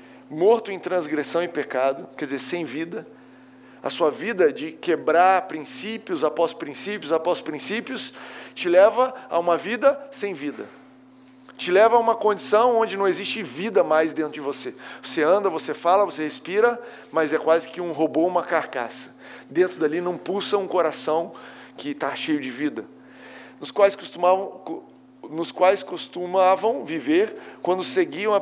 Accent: Brazilian